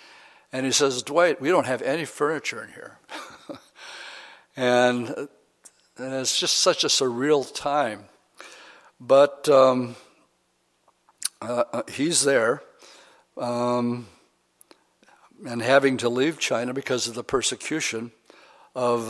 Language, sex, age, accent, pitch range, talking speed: English, male, 60-79, American, 125-140 Hz, 110 wpm